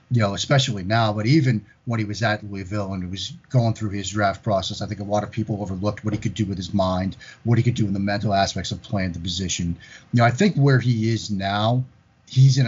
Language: English